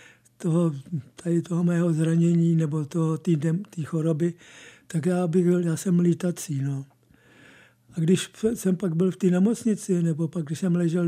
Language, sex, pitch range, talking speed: Czech, male, 165-185 Hz, 135 wpm